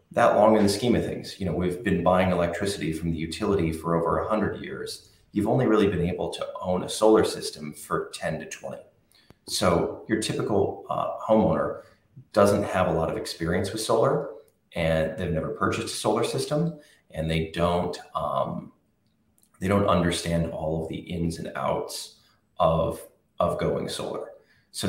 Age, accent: 30-49, American